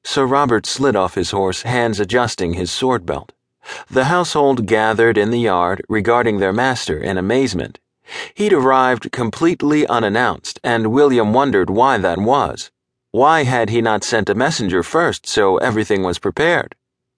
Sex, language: male, English